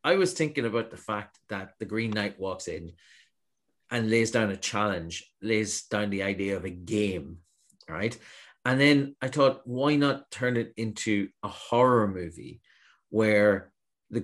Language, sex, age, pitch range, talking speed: English, male, 30-49, 100-120 Hz, 165 wpm